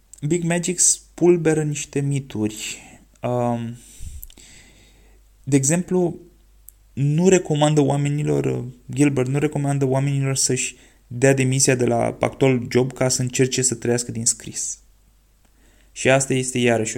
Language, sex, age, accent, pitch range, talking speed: Romanian, male, 20-39, native, 115-145 Hz, 115 wpm